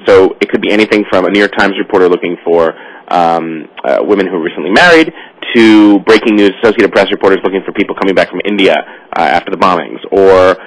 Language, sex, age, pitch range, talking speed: English, male, 30-49, 105-155 Hz, 215 wpm